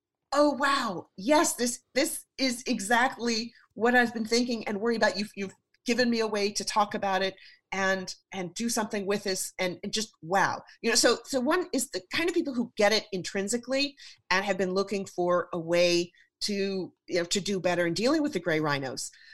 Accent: American